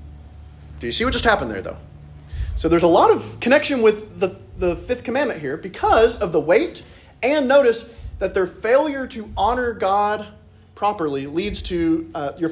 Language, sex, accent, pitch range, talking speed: English, male, American, 170-275 Hz, 175 wpm